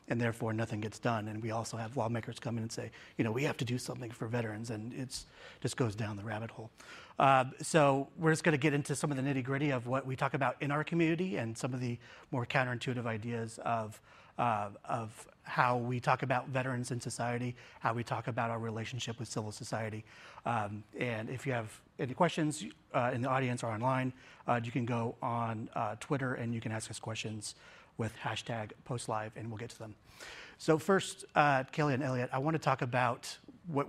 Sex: male